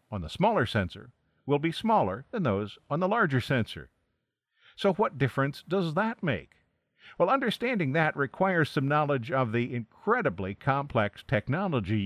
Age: 50-69